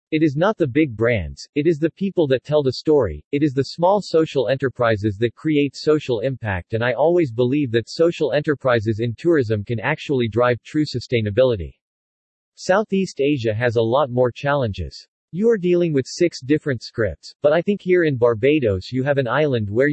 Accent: American